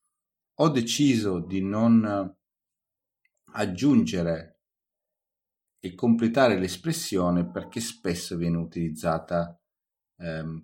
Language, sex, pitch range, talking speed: Italian, male, 85-115 Hz, 75 wpm